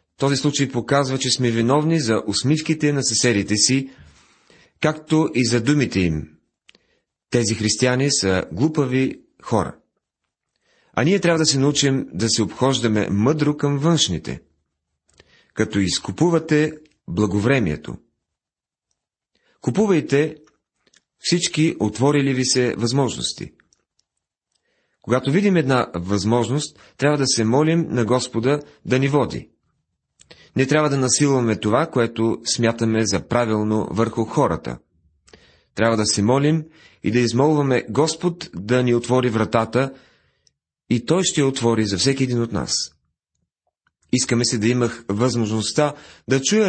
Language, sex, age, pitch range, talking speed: Bulgarian, male, 40-59, 105-145 Hz, 120 wpm